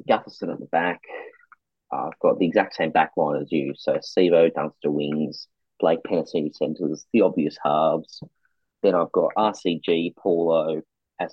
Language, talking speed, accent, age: English, 155 wpm, Australian, 30-49